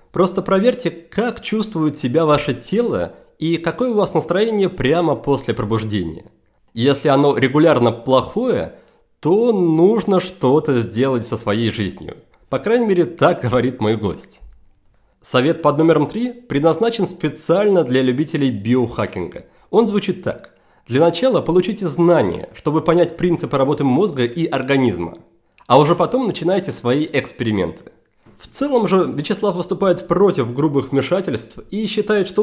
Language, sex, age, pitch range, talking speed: Russian, male, 30-49, 130-195 Hz, 135 wpm